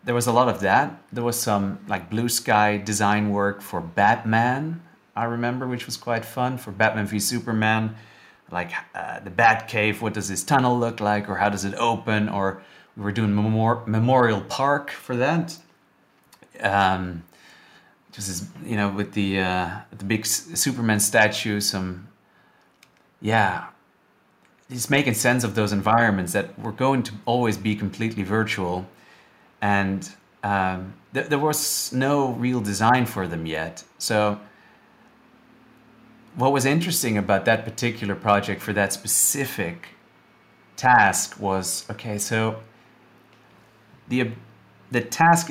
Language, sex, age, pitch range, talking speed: English, male, 30-49, 100-125 Hz, 145 wpm